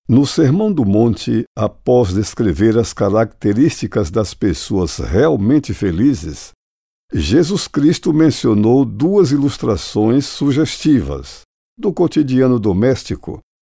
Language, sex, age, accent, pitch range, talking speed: Portuguese, male, 60-79, Brazilian, 105-135 Hz, 95 wpm